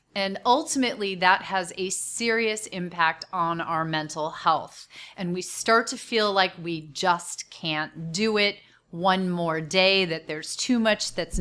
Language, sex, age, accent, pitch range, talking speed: English, female, 30-49, American, 175-225 Hz, 160 wpm